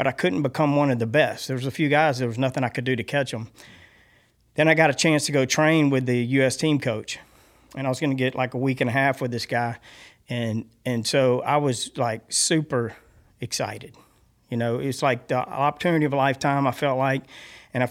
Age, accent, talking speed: 40-59, American, 240 wpm